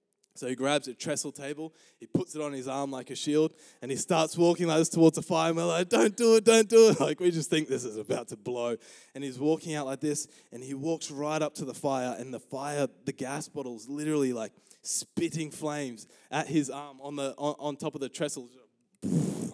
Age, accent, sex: 20-39, Australian, male